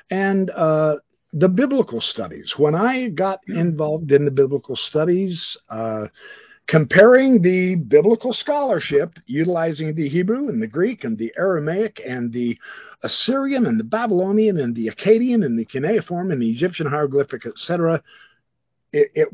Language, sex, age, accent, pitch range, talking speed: English, male, 50-69, American, 130-215 Hz, 145 wpm